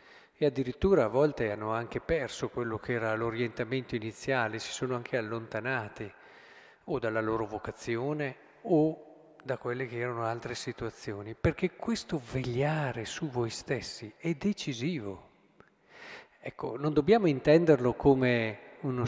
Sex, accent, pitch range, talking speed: male, native, 115-155 Hz, 130 wpm